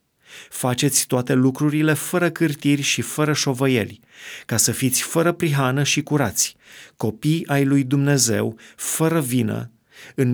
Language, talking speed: Romanian, 130 wpm